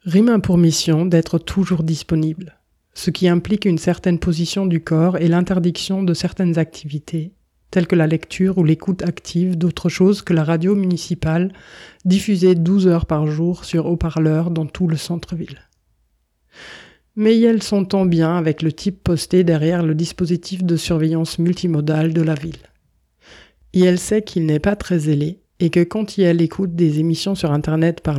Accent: French